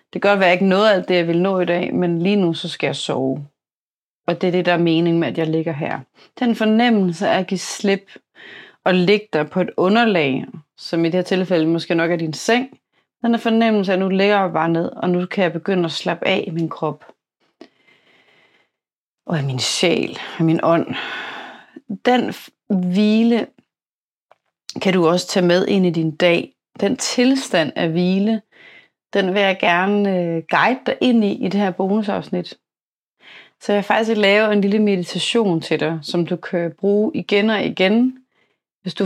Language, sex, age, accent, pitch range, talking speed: Danish, female, 30-49, native, 165-205 Hz, 195 wpm